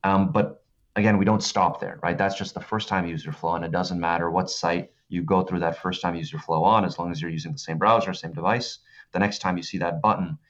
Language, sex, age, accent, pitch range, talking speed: English, male, 30-49, American, 85-100 Hz, 270 wpm